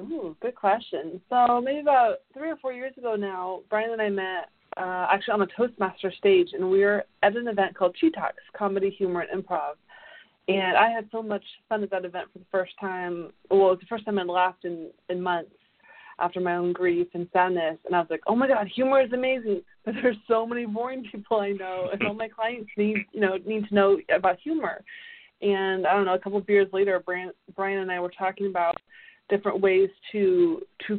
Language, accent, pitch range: English, American, 180-225 Hz